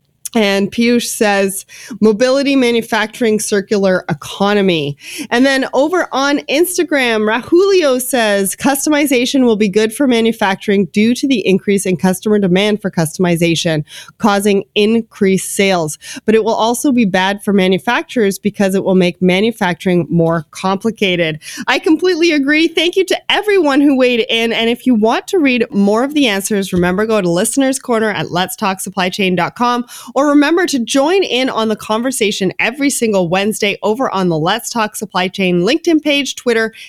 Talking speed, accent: 160 wpm, American